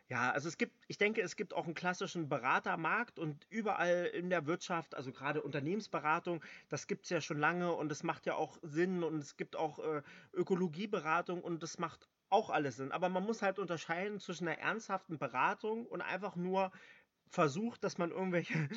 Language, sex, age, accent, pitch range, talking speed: German, male, 30-49, German, 160-195 Hz, 190 wpm